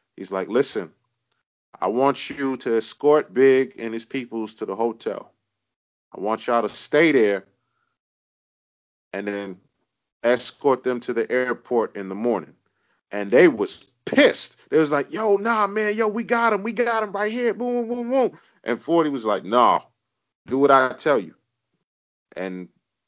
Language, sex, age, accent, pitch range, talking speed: English, male, 30-49, American, 125-185 Hz, 165 wpm